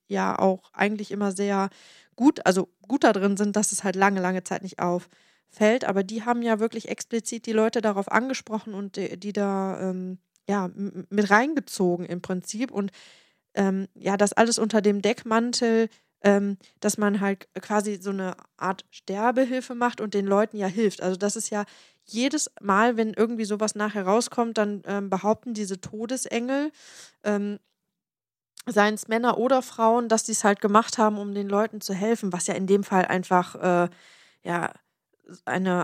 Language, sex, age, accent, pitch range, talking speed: English, female, 20-39, German, 190-220 Hz, 170 wpm